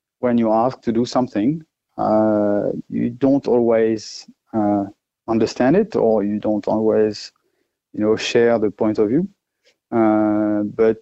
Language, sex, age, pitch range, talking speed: English, male, 30-49, 110-120 Hz, 140 wpm